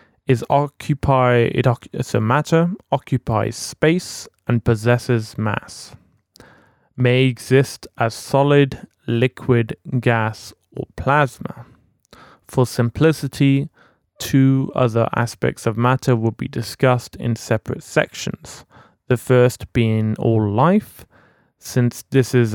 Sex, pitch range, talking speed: male, 110-130 Hz, 105 wpm